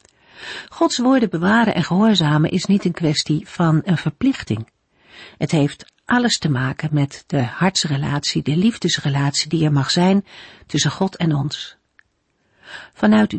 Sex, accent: female, Dutch